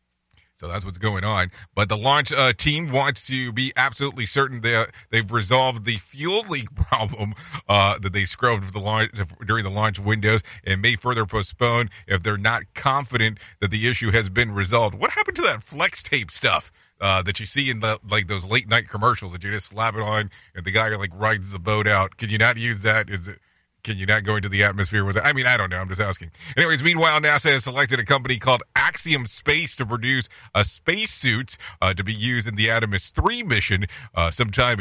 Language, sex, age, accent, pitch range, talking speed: English, male, 40-59, American, 100-130 Hz, 220 wpm